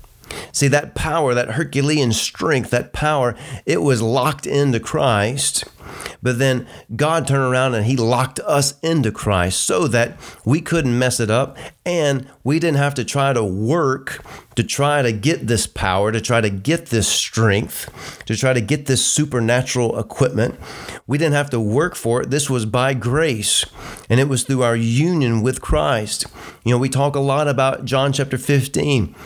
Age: 30-49